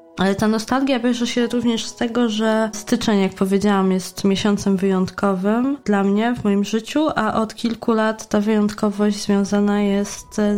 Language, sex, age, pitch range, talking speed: Polish, female, 20-39, 180-210 Hz, 160 wpm